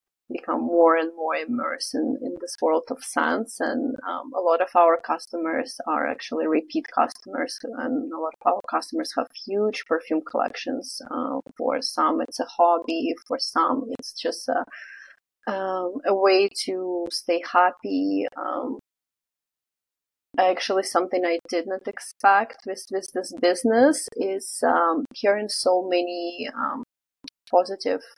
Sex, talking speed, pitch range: female, 145 wpm, 175-260 Hz